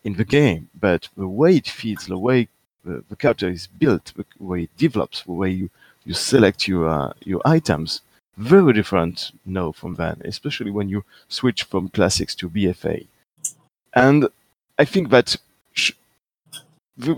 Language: English